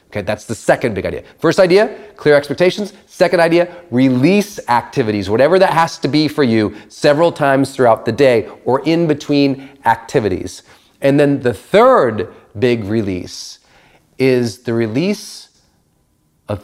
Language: English